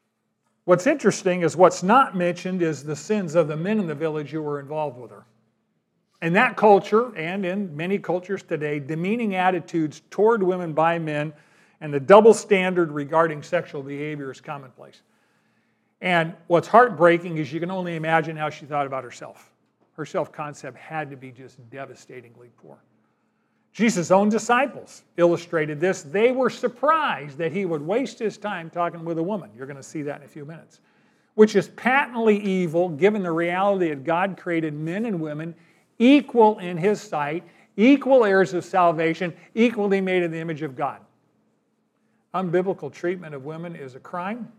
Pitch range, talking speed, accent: 155-205 Hz, 170 wpm, American